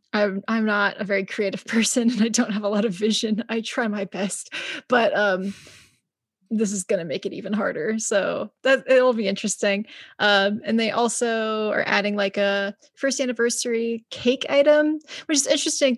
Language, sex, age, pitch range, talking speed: English, female, 20-39, 200-245 Hz, 185 wpm